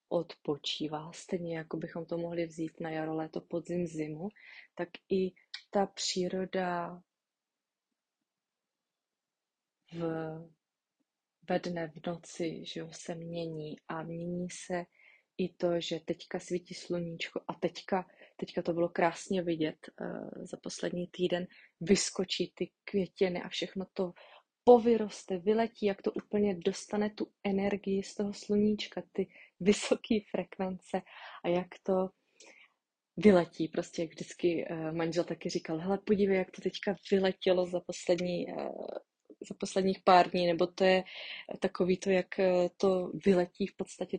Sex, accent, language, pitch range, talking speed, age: female, native, Czech, 170-195 Hz, 130 wpm, 30-49